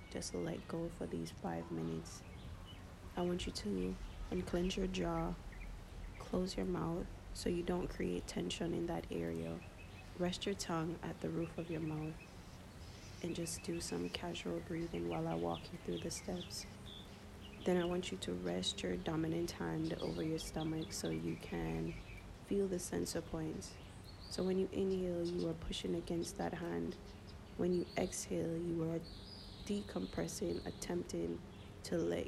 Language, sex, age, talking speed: English, female, 30-49, 160 wpm